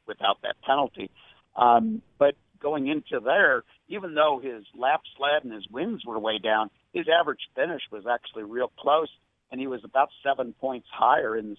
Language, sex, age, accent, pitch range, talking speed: English, male, 60-79, American, 110-140 Hz, 180 wpm